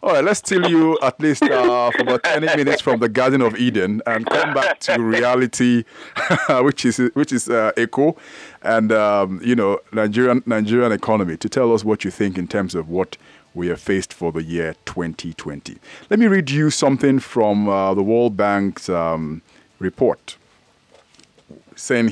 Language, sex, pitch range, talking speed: English, male, 105-145 Hz, 175 wpm